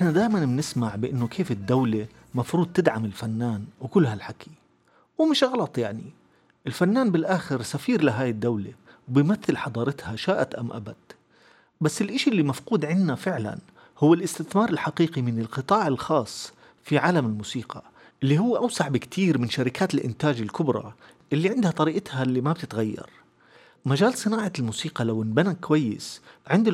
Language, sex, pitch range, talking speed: Arabic, male, 120-175 Hz, 135 wpm